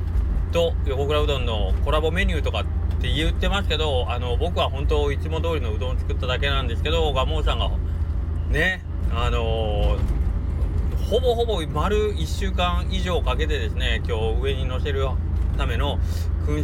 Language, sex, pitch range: Japanese, male, 80-85 Hz